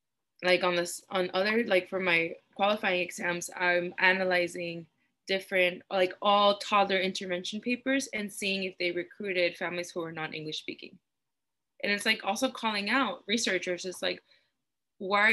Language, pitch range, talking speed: English, 175-220 Hz, 155 wpm